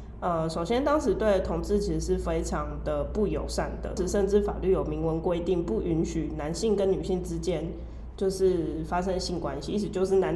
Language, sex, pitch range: Chinese, female, 165-195 Hz